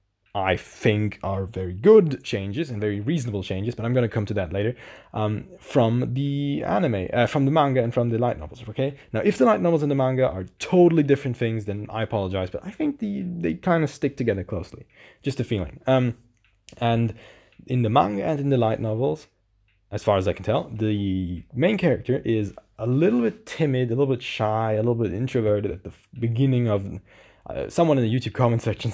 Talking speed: 210 wpm